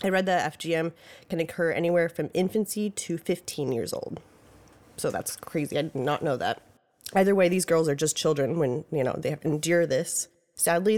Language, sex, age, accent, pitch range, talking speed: English, female, 20-39, American, 150-175 Hz, 195 wpm